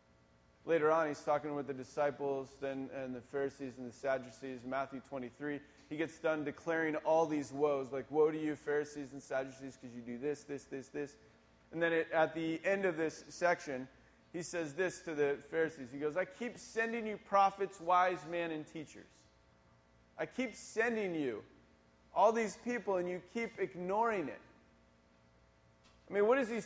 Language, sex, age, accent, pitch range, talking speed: English, male, 30-49, American, 105-165 Hz, 180 wpm